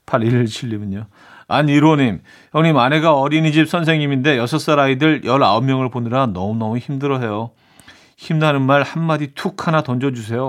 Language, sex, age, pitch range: Korean, male, 40-59, 105-140 Hz